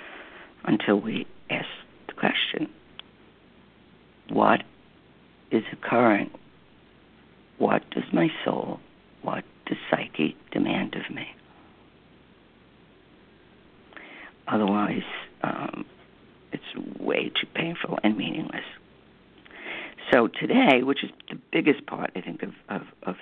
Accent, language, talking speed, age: American, English, 100 wpm, 60-79